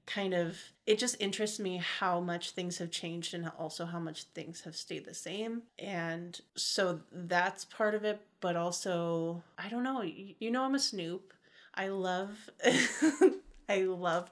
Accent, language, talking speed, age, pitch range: American, English, 170 wpm, 30-49, 165-190 Hz